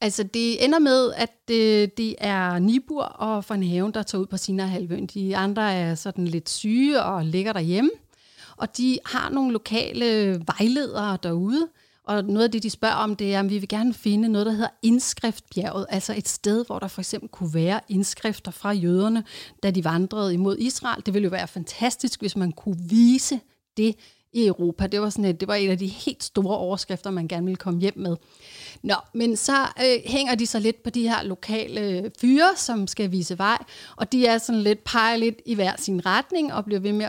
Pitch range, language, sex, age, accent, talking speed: 190-230 Hz, Danish, female, 30-49, native, 205 wpm